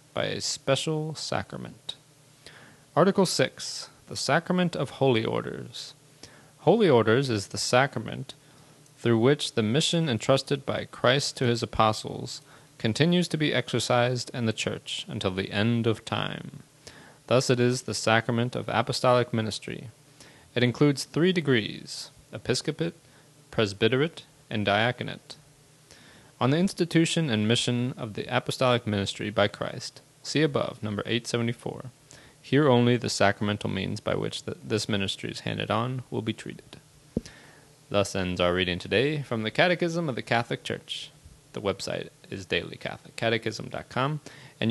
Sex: male